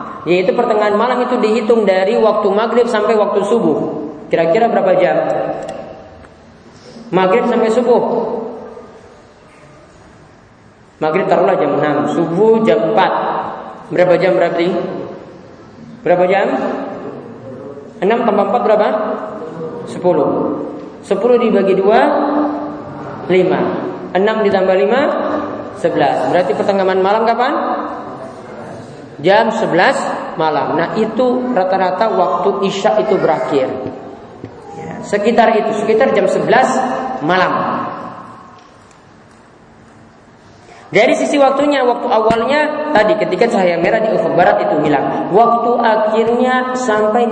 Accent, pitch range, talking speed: Indonesian, 180-230 Hz, 100 wpm